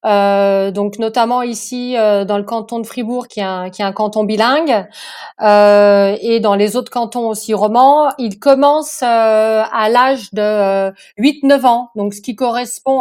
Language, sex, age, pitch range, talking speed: French, female, 30-49, 215-270 Hz, 175 wpm